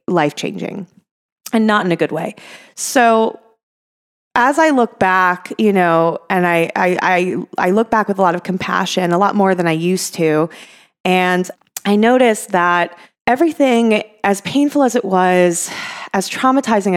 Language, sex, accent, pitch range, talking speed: English, female, American, 170-205 Hz, 160 wpm